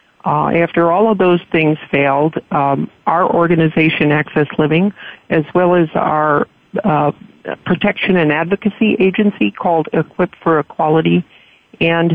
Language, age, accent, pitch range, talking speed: English, 50-69, American, 150-180 Hz, 130 wpm